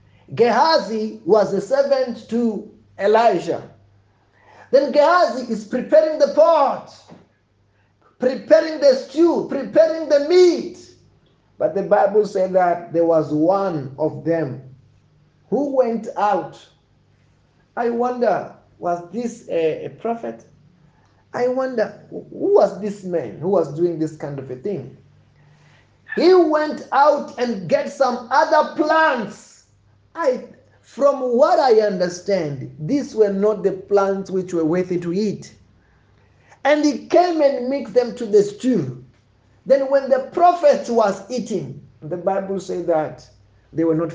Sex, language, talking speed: male, English, 130 wpm